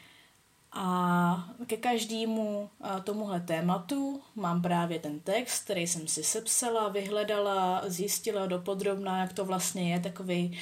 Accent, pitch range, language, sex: native, 180-210 Hz, Czech, female